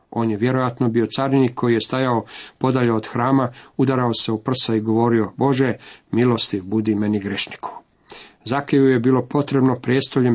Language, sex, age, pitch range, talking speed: Croatian, male, 40-59, 120-135 Hz, 150 wpm